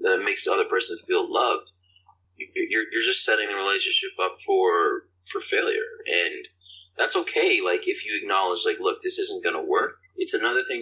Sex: male